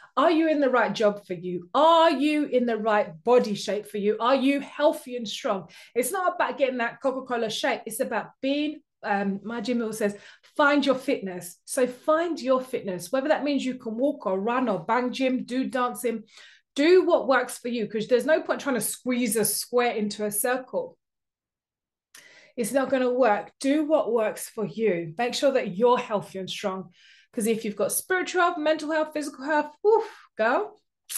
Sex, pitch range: female, 215-300 Hz